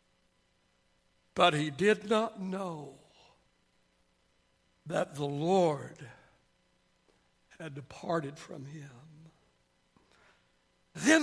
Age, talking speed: 60-79, 70 wpm